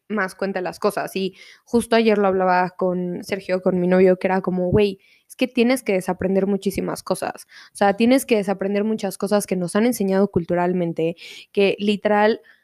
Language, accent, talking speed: Spanish, Mexican, 185 wpm